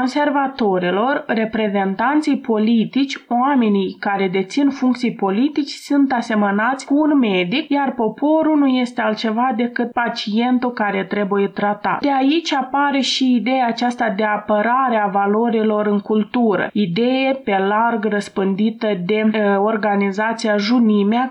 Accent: native